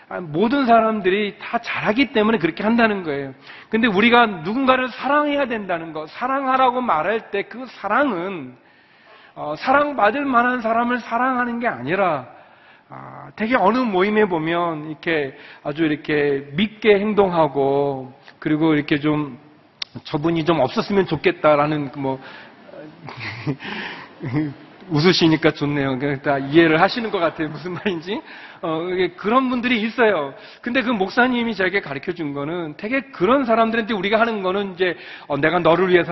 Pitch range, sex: 160-240 Hz, male